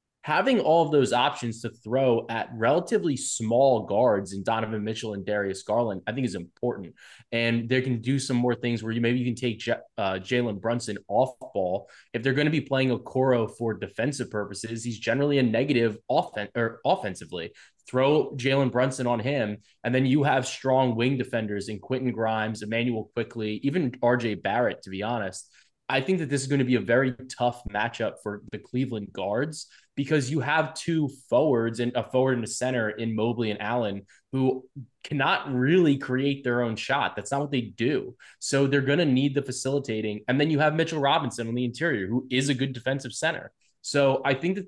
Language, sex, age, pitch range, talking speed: English, male, 20-39, 115-135 Hz, 200 wpm